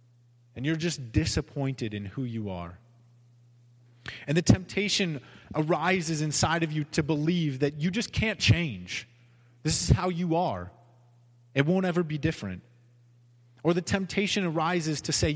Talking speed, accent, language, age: 150 wpm, American, English, 30-49